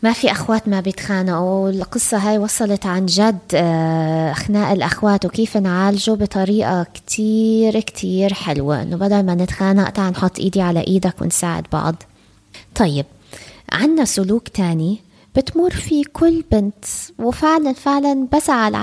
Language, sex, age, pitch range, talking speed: Arabic, female, 20-39, 180-230 Hz, 125 wpm